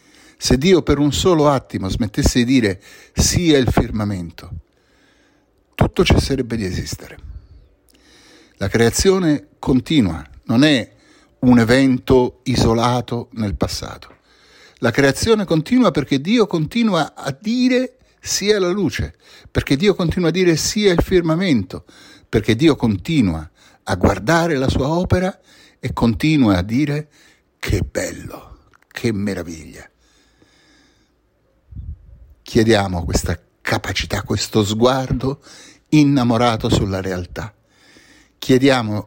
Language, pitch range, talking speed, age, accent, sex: Italian, 105-155 Hz, 110 wpm, 60-79, native, male